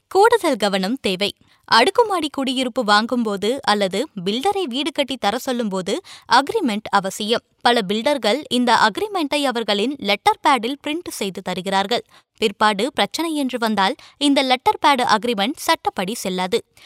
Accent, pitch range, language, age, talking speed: native, 215-295 Hz, Tamil, 20-39, 115 wpm